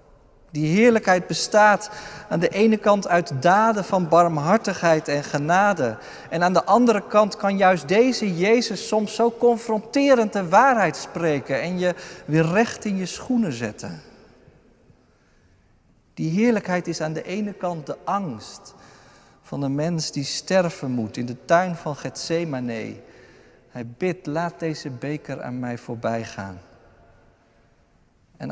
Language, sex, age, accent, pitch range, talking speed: Dutch, male, 50-69, Dutch, 130-190 Hz, 140 wpm